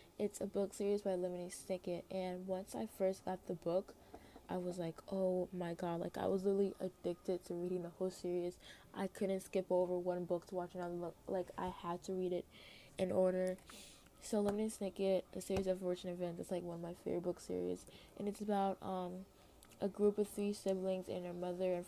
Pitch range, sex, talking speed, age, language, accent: 175-195 Hz, female, 210 wpm, 20-39, English, American